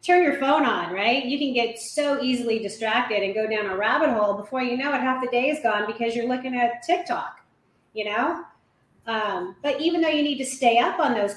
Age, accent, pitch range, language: 30-49, American, 210-260 Hz, English